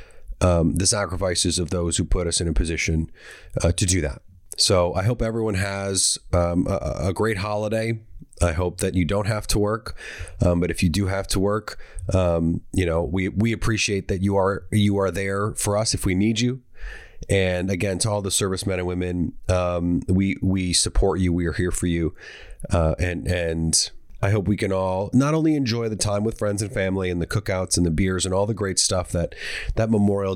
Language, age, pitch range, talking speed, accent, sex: English, 30-49, 90-105 Hz, 215 wpm, American, male